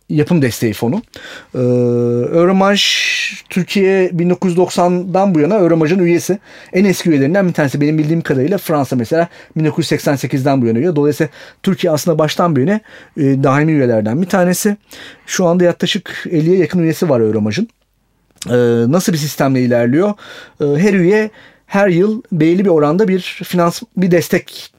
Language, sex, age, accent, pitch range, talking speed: Turkish, male, 40-59, native, 140-185 Hz, 150 wpm